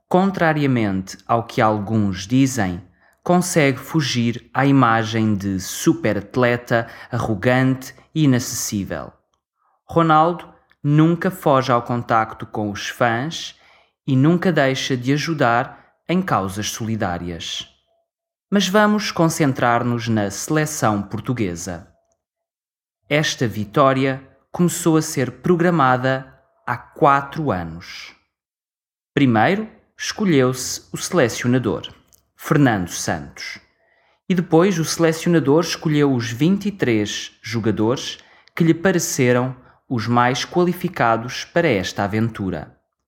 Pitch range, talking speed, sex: 110-160 Hz, 95 wpm, male